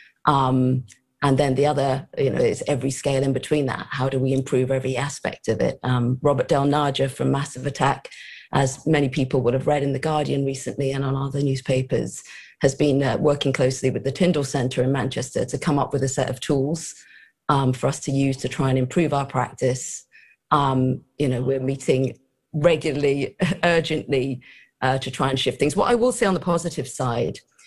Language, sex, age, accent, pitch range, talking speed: English, female, 40-59, British, 130-160 Hz, 200 wpm